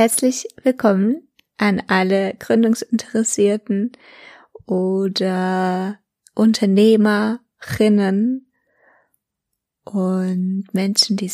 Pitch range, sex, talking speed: 190-230 Hz, female, 55 wpm